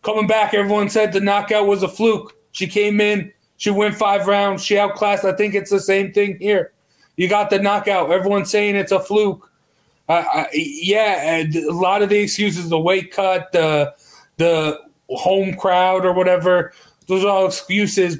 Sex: male